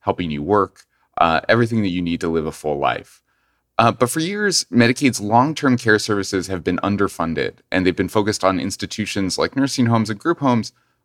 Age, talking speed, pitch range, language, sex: 30-49, 195 wpm, 90-120 Hz, English, male